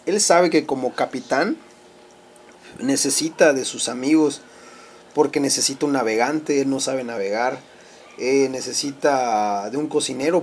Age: 30-49